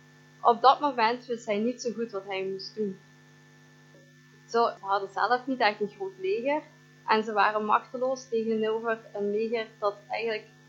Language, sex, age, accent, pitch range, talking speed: Dutch, female, 20-39, Dutch, 210-250 Hz, 170 wpm